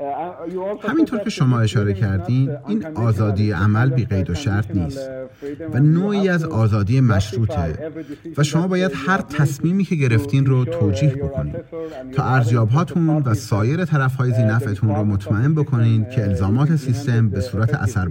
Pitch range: 105-145 Hz